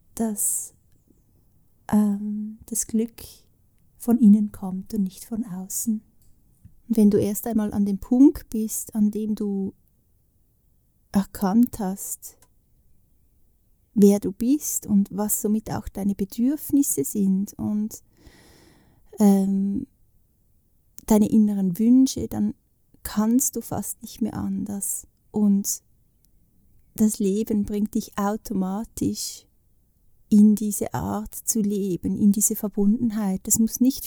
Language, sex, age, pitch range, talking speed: German, female, 30-49, 200-225 Hz, 115 wpm